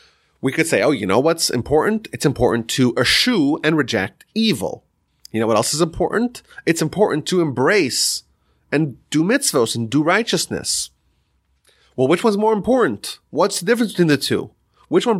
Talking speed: 175 wpm